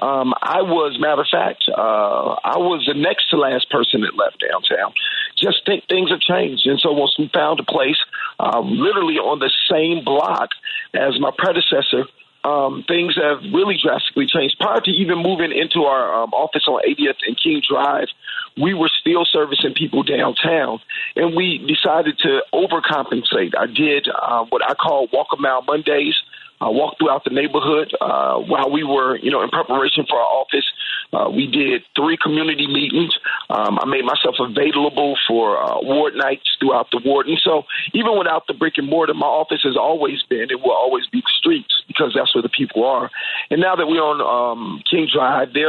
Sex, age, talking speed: male, 40-59, 190 wpm